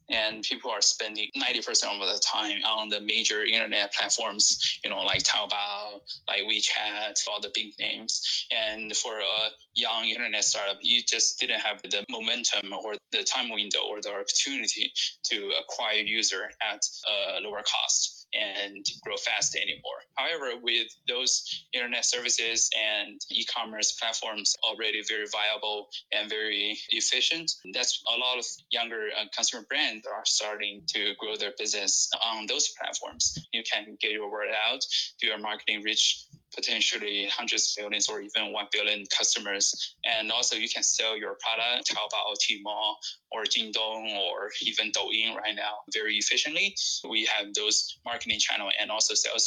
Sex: male